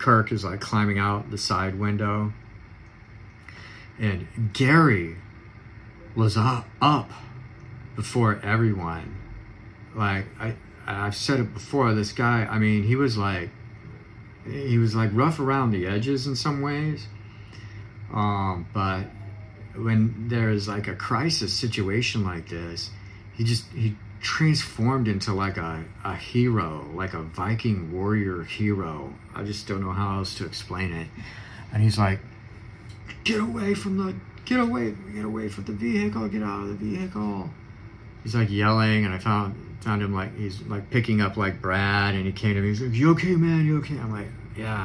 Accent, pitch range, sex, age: American, 100-115 Hz, male, 40-59